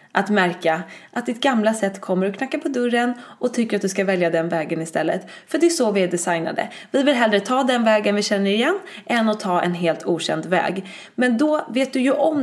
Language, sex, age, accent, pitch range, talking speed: English, female, 20-39, Swedish, 180-225 Hz, 235 wpm